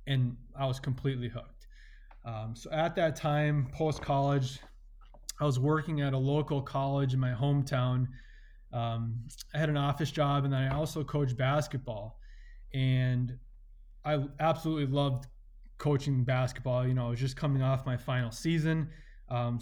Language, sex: English, male